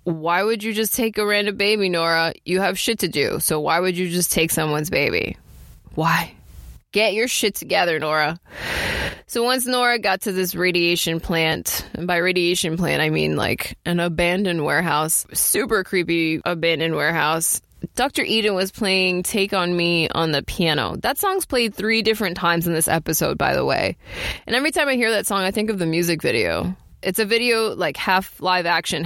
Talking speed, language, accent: 190 wpm, English, American